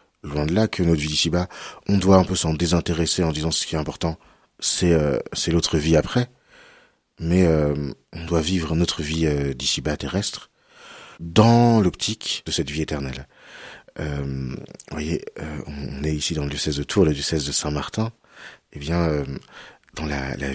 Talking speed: 185 wpm